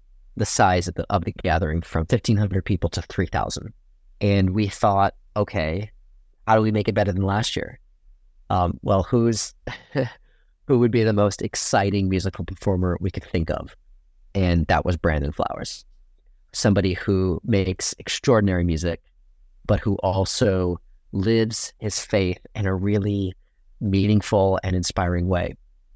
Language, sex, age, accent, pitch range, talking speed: English, male, 30-49, American, 85-105 Hz, 145 wpm